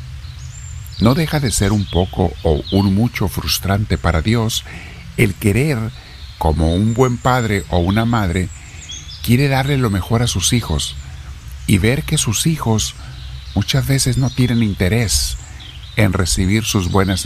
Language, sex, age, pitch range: Spanish, male, 50-69, 80-115 Hz